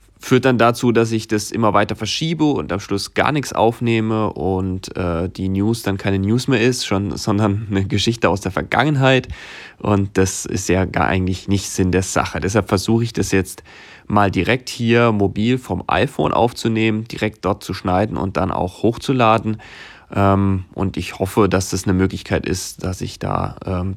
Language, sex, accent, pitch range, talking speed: German, male, German, 95-115 Hz, 185 wpm